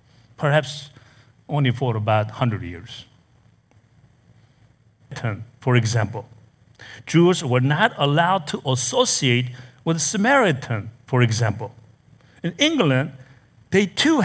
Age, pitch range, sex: 60-79, 120-190 Hz, male